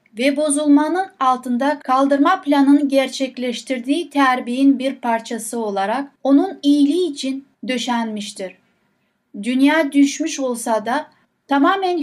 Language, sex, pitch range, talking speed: Turkish, female, 230-285 Hz, 95 wpm